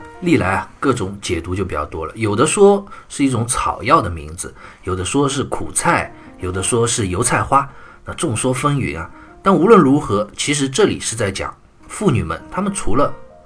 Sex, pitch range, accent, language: male, 95-135 Hz, native, Chinese